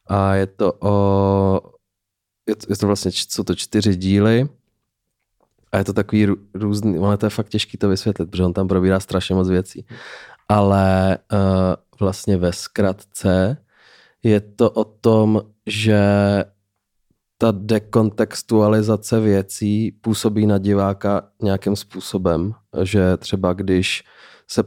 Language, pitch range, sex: Czech, 95-105 Hz, male